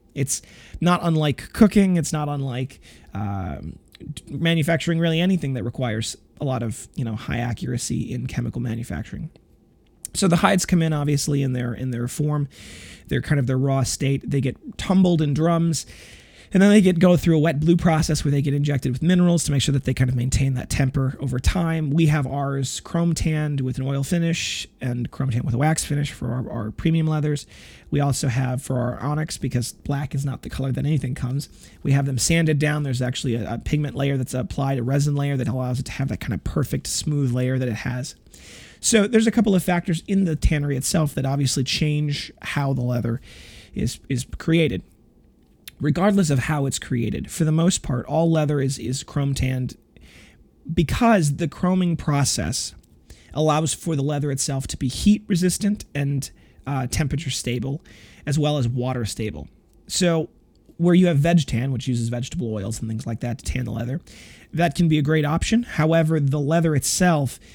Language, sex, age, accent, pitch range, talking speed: English, male, 30-49, American, 125-160 Hz, 200 wpm